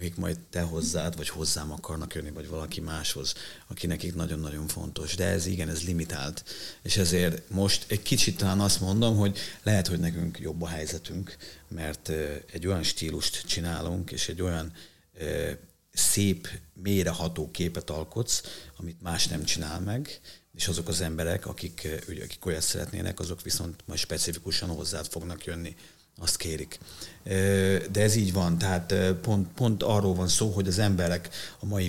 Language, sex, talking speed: Hungarian, male, 160 wpm